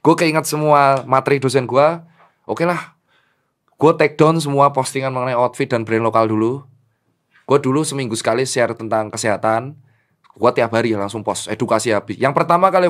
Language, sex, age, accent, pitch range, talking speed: Indonesian, male, 20-39, native, 120-155 Hz, 170 wpm